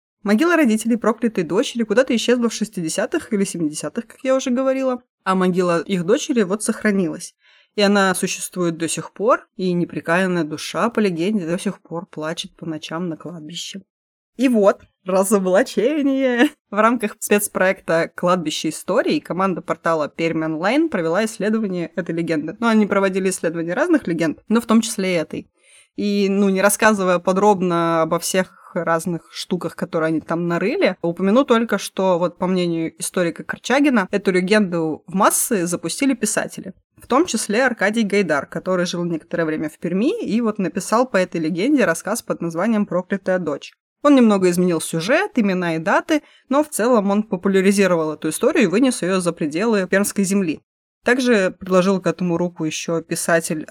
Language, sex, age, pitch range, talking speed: Russian, female, 20-39, 170-220 Hz, 160 wpm